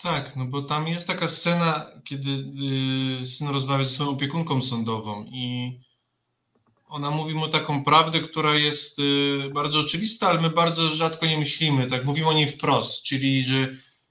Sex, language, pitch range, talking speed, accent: male, Polish, 140-170 Hz, 155 wpm, native